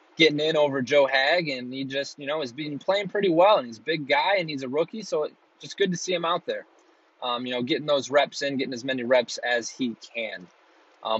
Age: 20-39